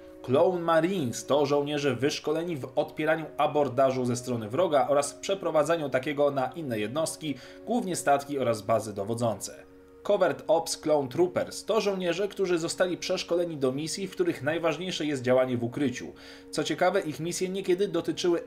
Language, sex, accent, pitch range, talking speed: Polish, male, native, 130-180 Hz, 150 wpm